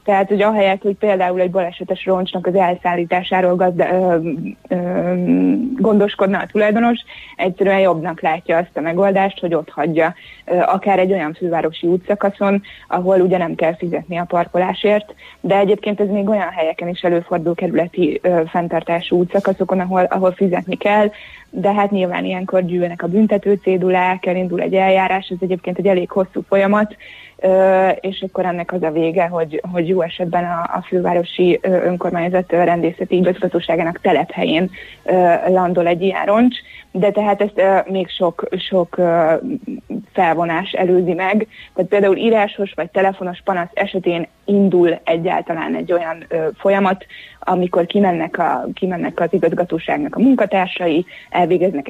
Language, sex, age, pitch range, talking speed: Hungarian, female, 20-39, 175-200 Hz, 150 wpm